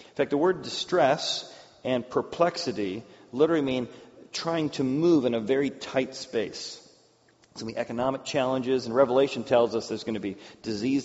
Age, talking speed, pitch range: 40-59, 175 wpm, 115-150 Hz